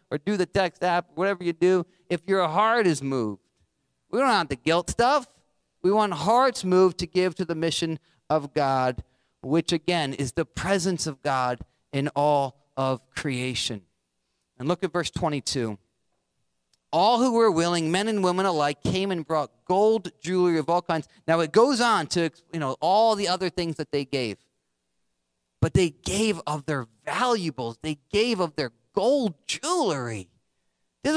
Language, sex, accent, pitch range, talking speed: English, male, American, 155-225 Hz, 170 wpm